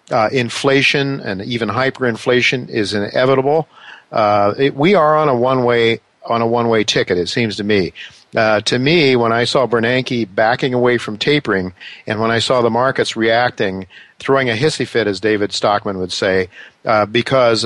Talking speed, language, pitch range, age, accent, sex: 170 wpm, English, 110-130 Hz, 50-69, American, male